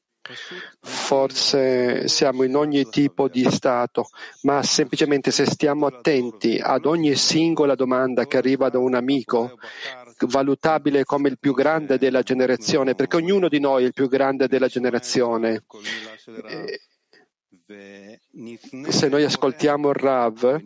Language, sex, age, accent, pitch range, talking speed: Italian, male, 40-59, native, 130-150 Hz, 125 wpm